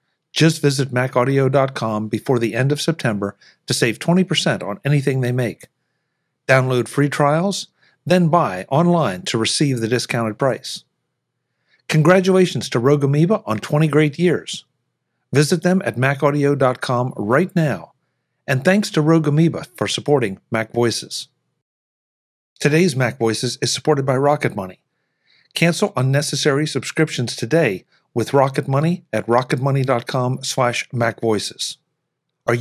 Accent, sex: American, male